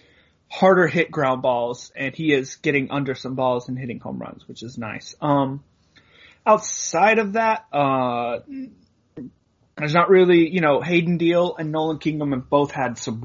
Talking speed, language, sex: 170 wpm, English, male